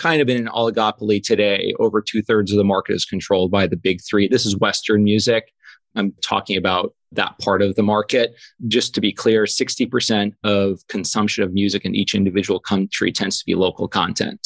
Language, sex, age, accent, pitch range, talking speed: English, male, 30-49, American, 100-115 Hz, 195 wpm